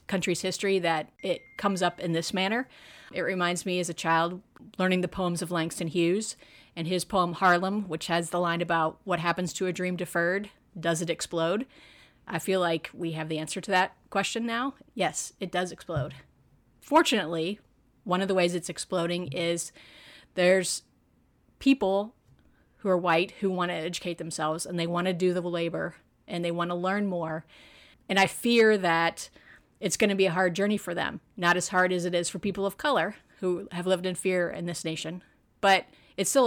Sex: female